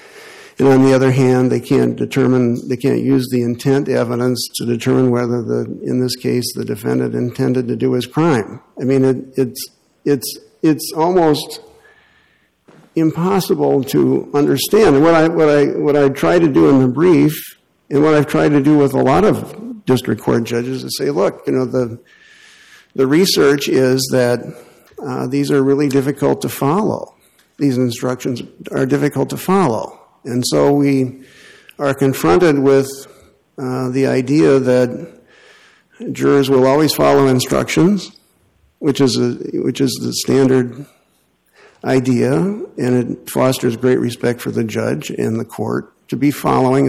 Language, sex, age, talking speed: English, male, 50-69, 155 wpm